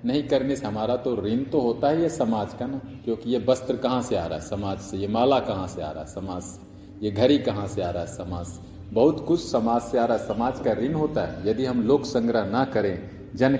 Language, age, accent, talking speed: Hindi, 40-59, native, 260 wpm